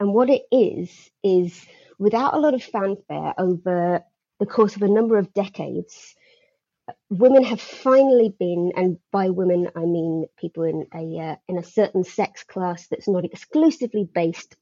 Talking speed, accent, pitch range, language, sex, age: 165 wpm, British, 175-220 Hz, English, female, 30-49